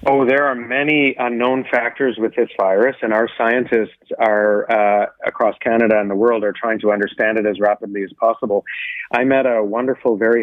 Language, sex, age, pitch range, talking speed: English, male, 40-59, 110-130 Hz, 190 wpm